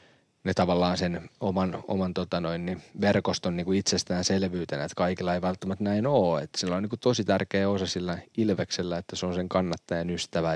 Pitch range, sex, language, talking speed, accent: 90-105 Hz, male, Finnish, 180 wpm, native